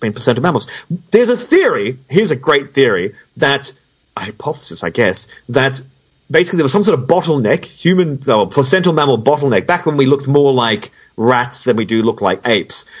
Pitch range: 130-185 Hz